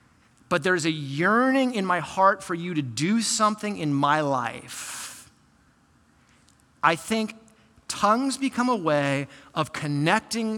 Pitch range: 145-215 Hz